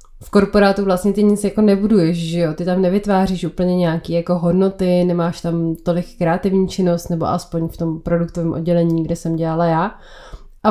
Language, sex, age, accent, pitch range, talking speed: Czech, female, 20-39, native, 170-195 Hz, 180 wpm